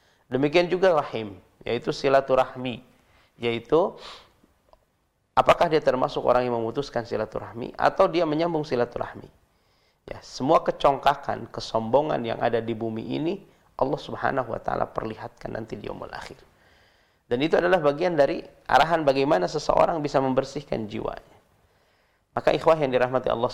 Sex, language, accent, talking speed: male, Indonesian, native, 130 wpm